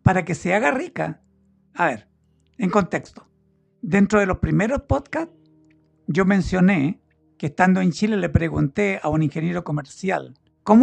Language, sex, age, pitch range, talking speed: Spanish, male, 60-79, 150-205 Hz, 150 wpm